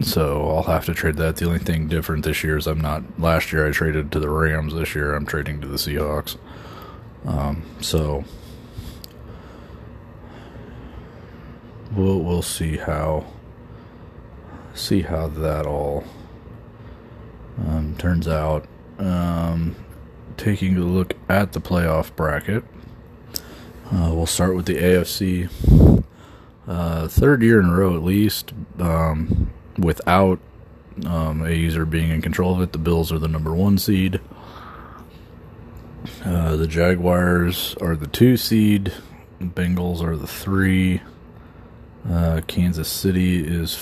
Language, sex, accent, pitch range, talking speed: English, male, American, 80-90 Hz, 130 wpm